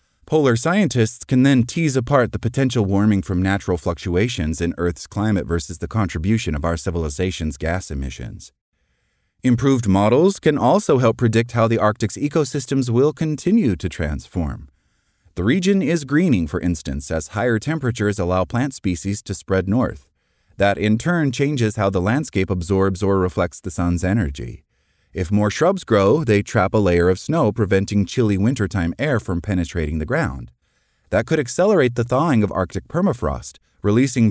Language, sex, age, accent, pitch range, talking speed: English, male, 30-49, American, 90-130 Hz, 160 wpm